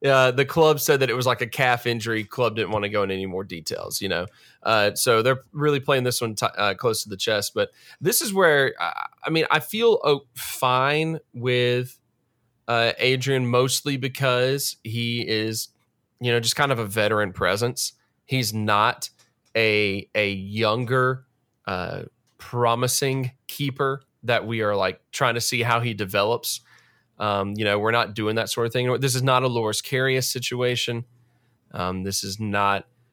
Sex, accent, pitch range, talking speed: male, American, 110-130 Hz, 180 wpm